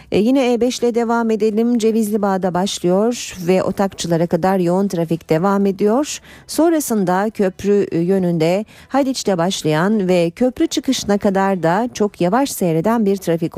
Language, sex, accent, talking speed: Turkish, female, native, 135 wpm